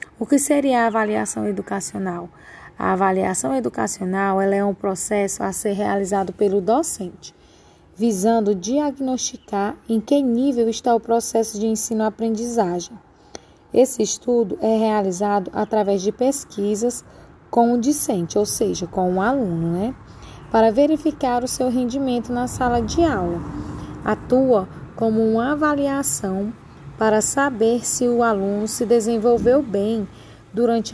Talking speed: 130 wpm